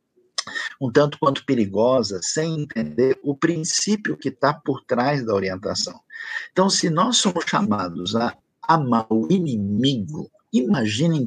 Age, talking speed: 50-69, 135 wpm